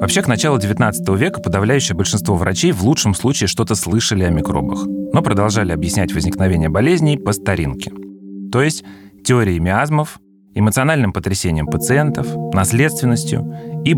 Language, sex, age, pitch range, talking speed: Russian, male, 30-49, 90-125 Hz, 135 wpm